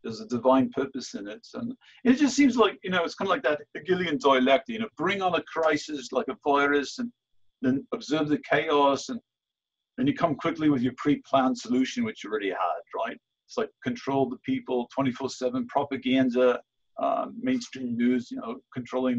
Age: 50-69